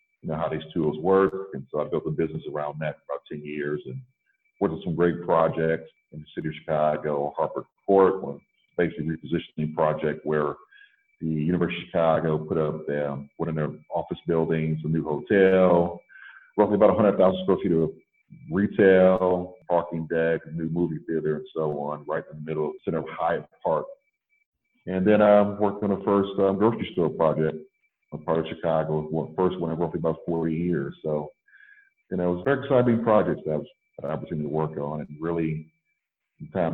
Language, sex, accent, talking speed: English, male, American, 190 wpm